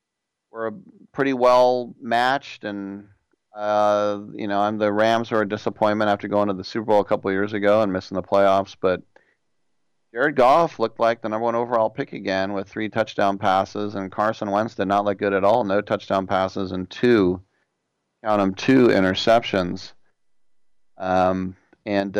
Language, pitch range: English, 95-110 Hz